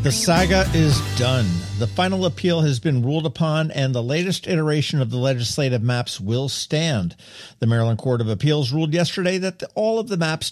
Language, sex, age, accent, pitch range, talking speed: English, male, 50-69, American, 110-155 Hz, 195 wpm